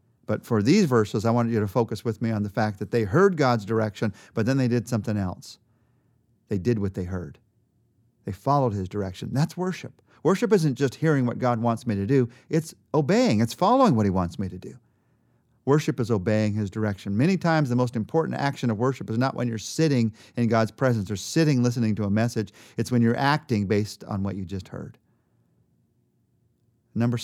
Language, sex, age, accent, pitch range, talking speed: English, male, 40-59, American, 105-125 Hz, 205 wpm